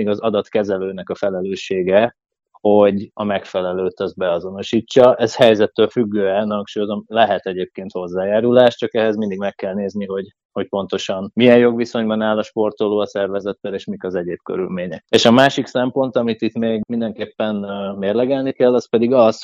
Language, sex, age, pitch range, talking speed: Hungarian, male, 20-39, 95-115 Hz, 155 wpm